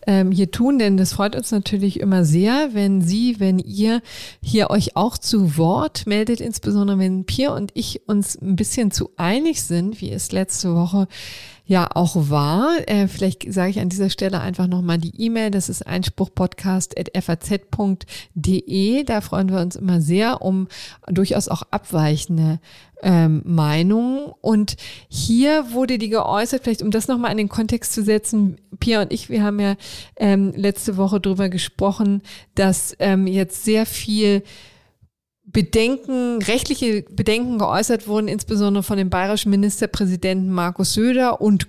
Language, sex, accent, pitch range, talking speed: German, female, German, 185-215 Hz, 150 wpm